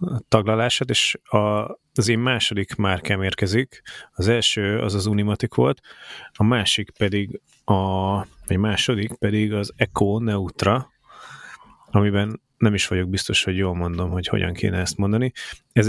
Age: 30-49